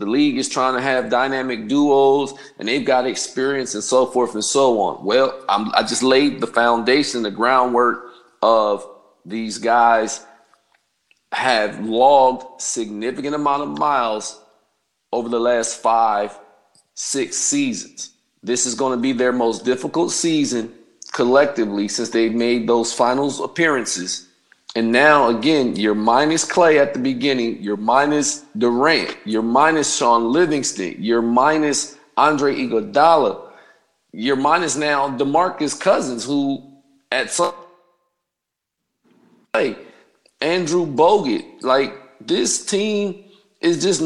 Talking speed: 130 wpm